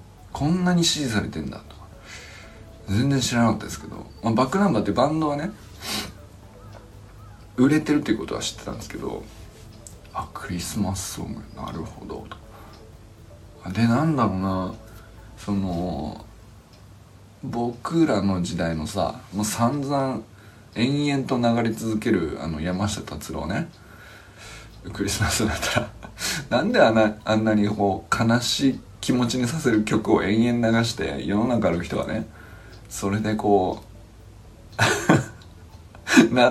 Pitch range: 100-120 Hz